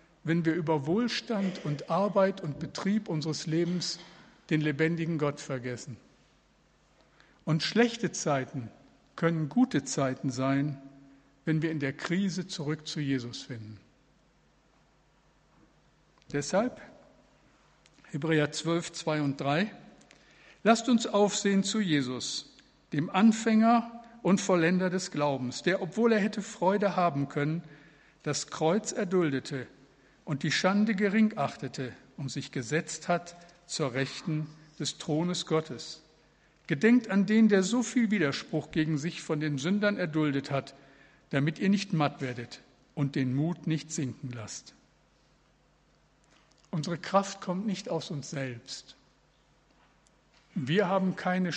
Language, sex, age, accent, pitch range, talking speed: German, male, 60-79, German, 140-195 Hz, 125 wpm